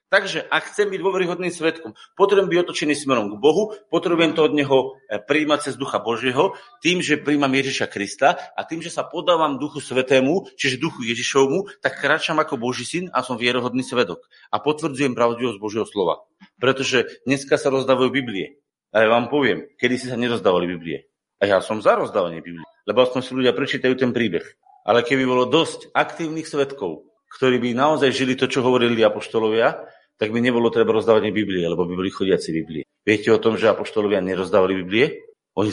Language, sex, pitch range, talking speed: Slovak, male, 120-165 Hz, 185 wpm